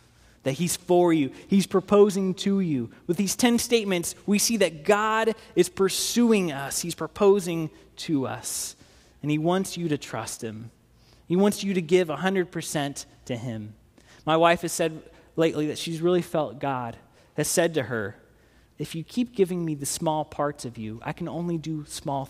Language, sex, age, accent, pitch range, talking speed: English, male, 20-39, American, 125-185 Hz, 180 wpm